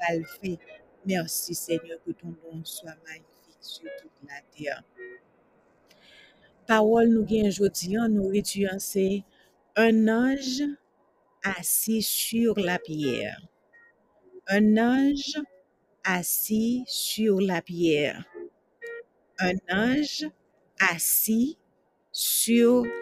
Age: 60-79